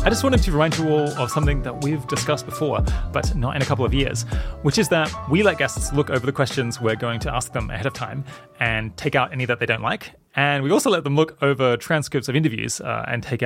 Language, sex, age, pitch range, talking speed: English, male, 20-39, 115-145 Hz, 265 wpm